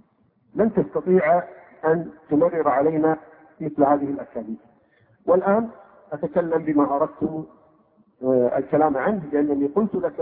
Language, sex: Arabic, male